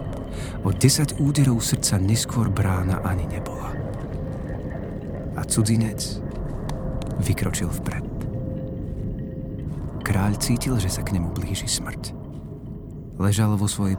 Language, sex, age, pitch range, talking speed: Slovak, male, 40-59, 90-110 Hz, 100 wpm